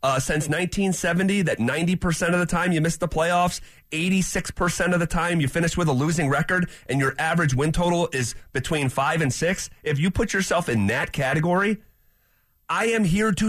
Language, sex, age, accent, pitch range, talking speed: English, male, 30-49, American, 150-185 Hz, 190 wpm